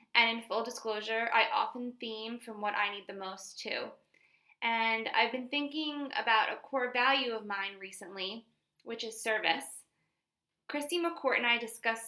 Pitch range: 215-245 Hz